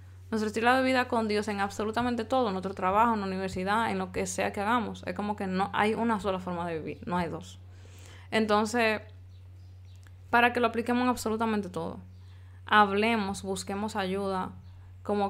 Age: 20-39